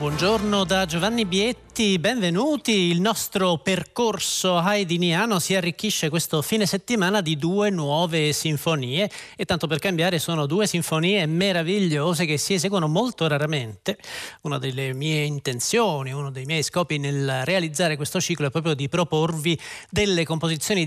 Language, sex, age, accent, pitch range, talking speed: Italian, male, 40-59, native, 150-195 Hz, 140 wpm